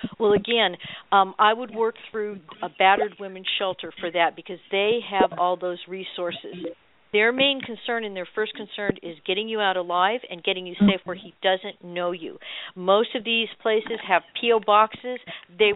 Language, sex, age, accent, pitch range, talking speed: English, female, 50-69, American, 180-215 Hz, 185 wpm